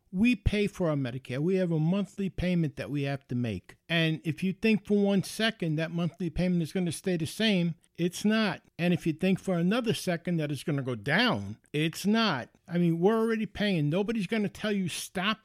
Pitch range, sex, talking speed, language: 165-215 Hz, male, 230 wpm, English